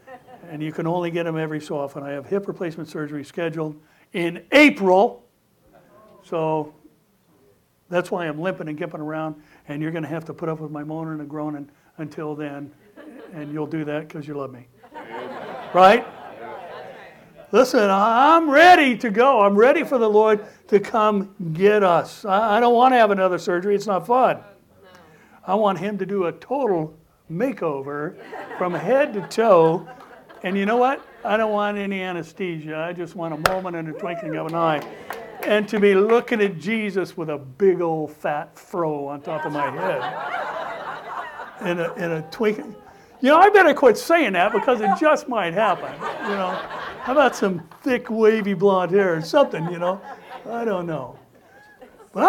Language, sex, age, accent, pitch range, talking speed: English, male, 60-79, American, 155-215 Hz, 180 wpm